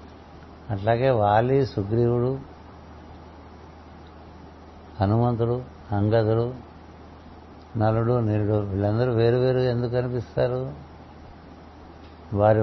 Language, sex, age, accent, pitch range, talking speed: Telugu, male, 60-79, native, 80-120 Hz, 60 wpm